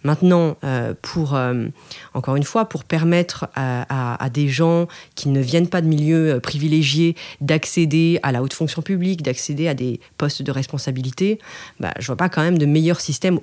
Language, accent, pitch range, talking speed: French, French, 135-165 Hz, 180 wpm